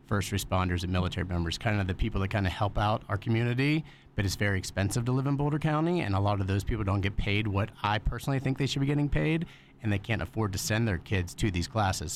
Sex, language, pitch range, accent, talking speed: male, English, 95-115 Hz, American, 265 wpm